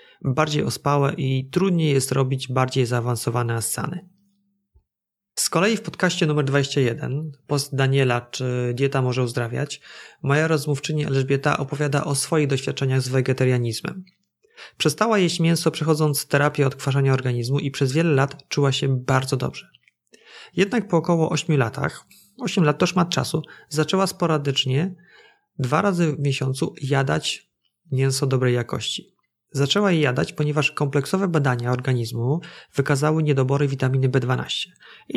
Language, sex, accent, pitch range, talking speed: Polish, male, native, 135-165 Hz, 130 wpm